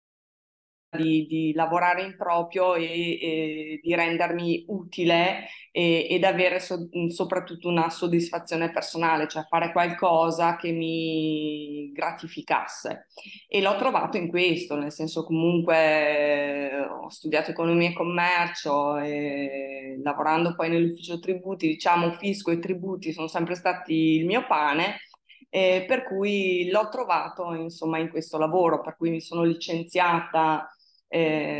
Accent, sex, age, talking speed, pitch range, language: native, female, 20-39, 125 wpm, 160-185 Hz, Italian